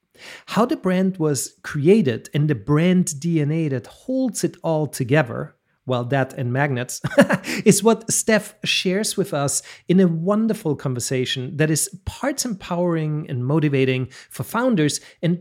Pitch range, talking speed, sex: 130-185 Hz, 145 wpm, male